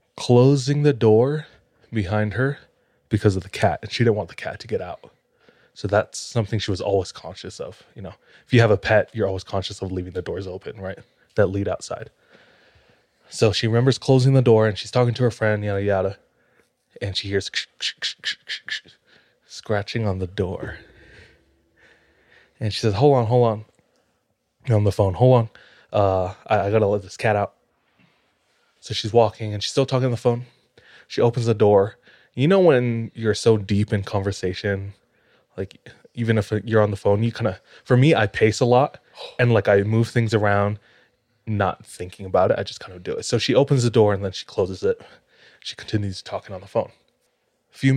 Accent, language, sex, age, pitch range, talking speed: American, English, male, 20-39, 100-120 Hz, 200 wpm